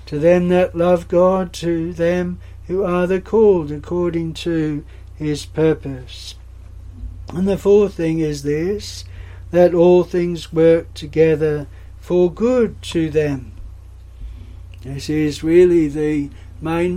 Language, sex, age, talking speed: English, male, 60-79, 125 wpm